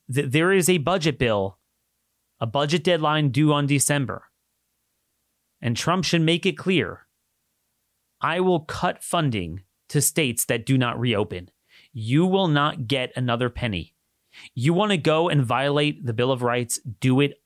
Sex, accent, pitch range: male, American, 120-155 Hz